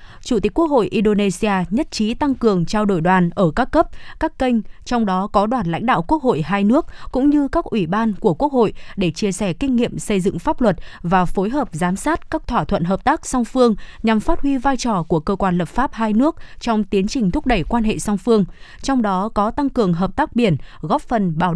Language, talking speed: Vietnamese, 245 wpm